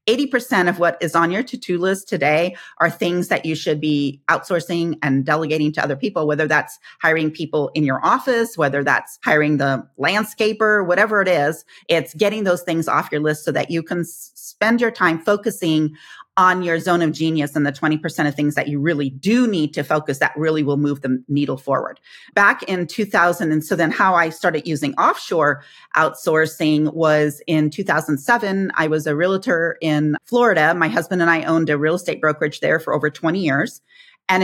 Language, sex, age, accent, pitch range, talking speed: English, female, 40-59, American, 155-190 Hz, 190 wpm